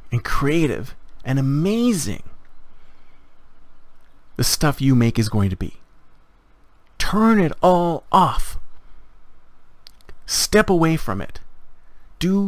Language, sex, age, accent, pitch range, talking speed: English, male, 40-59, American, 120-170 Hz, 100 wpm